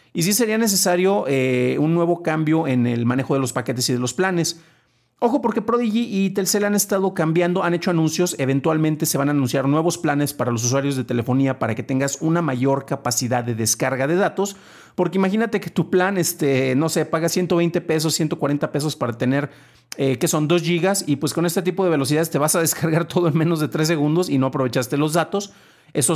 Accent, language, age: Mexican, Spanish, 40-59